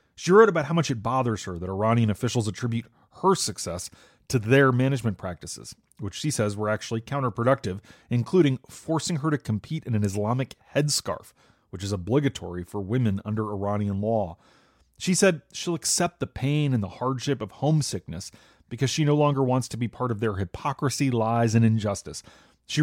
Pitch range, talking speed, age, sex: 110-145 Hz, 175 wpm, 30-49, male